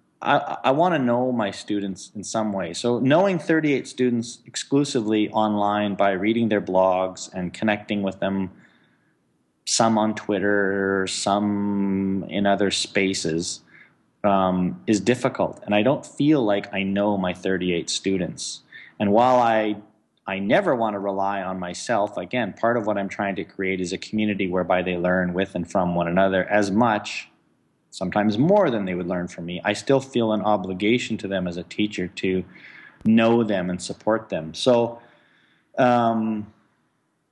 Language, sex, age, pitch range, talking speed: English, male, 30-49, 95-125 Hz, 160 wpm